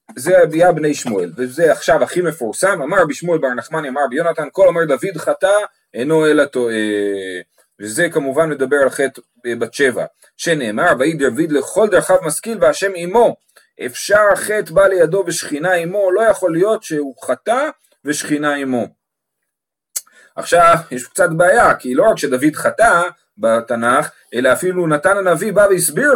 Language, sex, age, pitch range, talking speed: Hebrew, male, 30-49, 120-185 Hz, 150 wpm